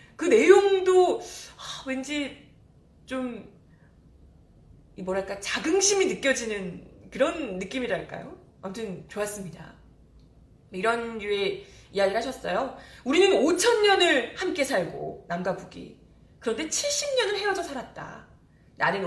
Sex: female